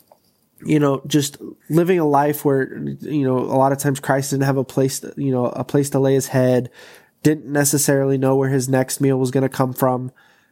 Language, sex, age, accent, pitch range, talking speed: English, male, 20-39, American, 125-145 Hz, 215 wpm